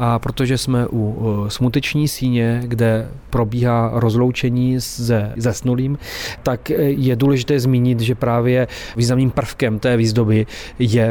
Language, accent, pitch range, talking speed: Czech, native, 115-125 Hz, 120 wpm